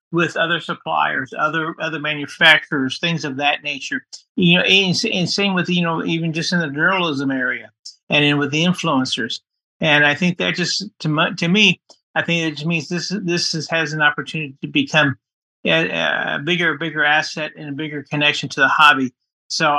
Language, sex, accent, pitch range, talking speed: English, male, American, 150-180 Hz, 190 wpm